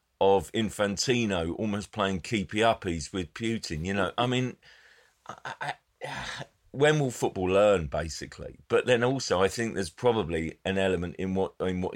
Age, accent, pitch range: 40-59, British, 80-100 Hz